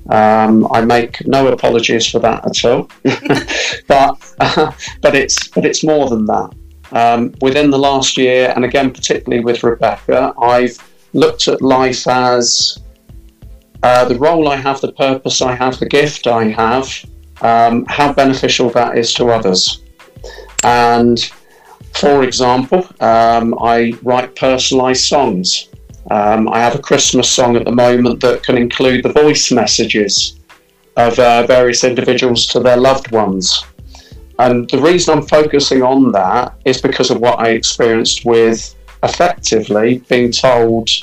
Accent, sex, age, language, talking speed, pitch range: British, male, 40-59, English, 150 wpm, 115-130 Hz